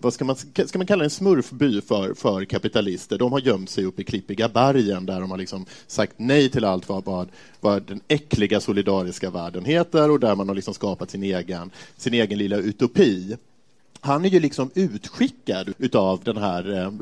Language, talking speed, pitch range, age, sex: Swedish, 185 wpm, 95-130 Hz, 30-49, male